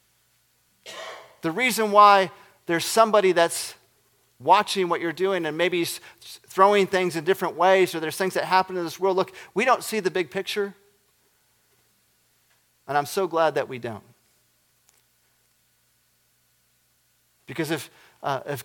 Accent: American